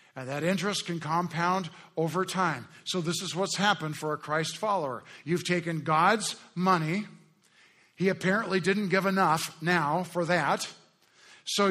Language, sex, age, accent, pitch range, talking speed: English, male, 50-69, American, 145-190 Hz, 150 wpm